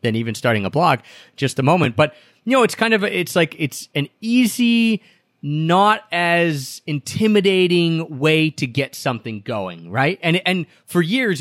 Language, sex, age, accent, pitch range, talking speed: English, male, 30-49, American, 130-170 Hz, 175 wpm